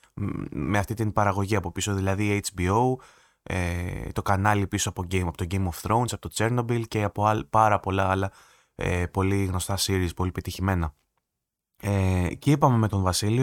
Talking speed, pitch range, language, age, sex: 155 wpm, 95-120 Hz, Greek, 20-39, male